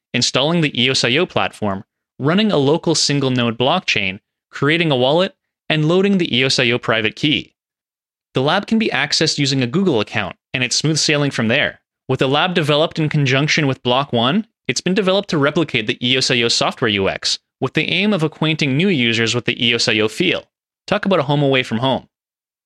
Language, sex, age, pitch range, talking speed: English, male, 30-49, 120-160 Hz, 185 wpm